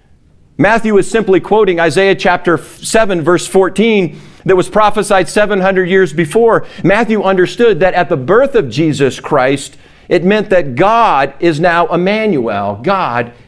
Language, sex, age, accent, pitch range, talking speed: English, male, 50-69, American, 160-205 Hz, 145 wpm